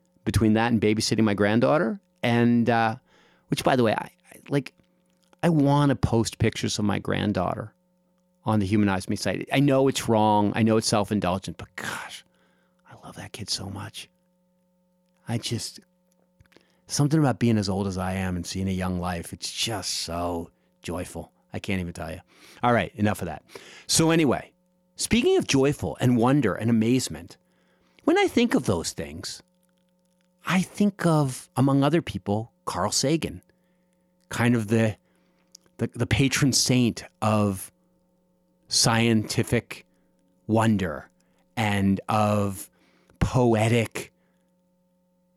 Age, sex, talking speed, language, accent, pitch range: 40-59, male, 145 wpm, English, American, 105-165 Hz